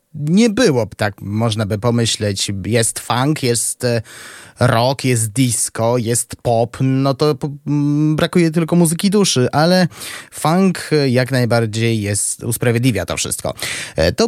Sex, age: male, 20-39